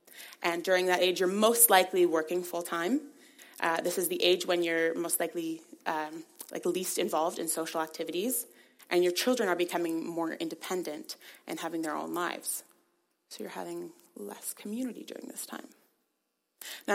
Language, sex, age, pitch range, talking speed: English, female, 20-39, 170-235 Hz, 165 wpm